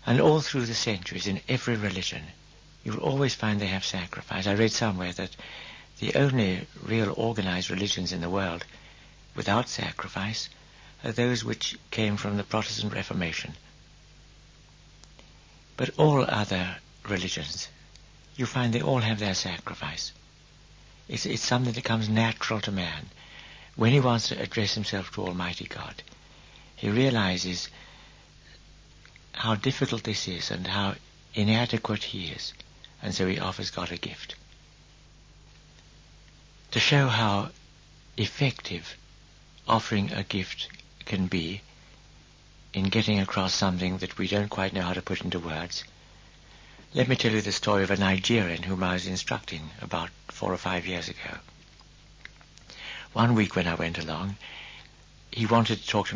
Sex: male